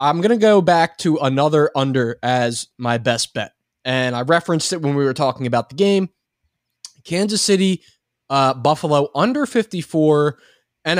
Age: 20-39